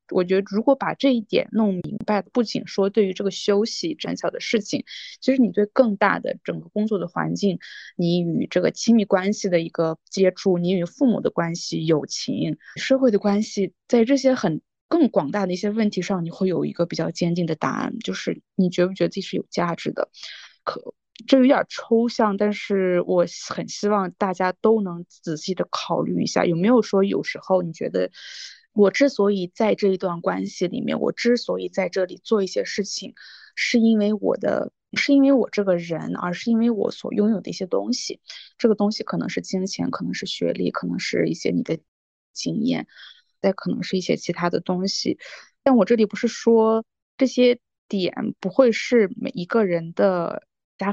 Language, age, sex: Chinese, 20-39, female